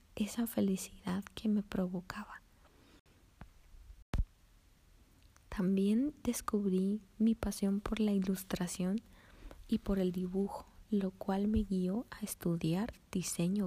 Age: 20-39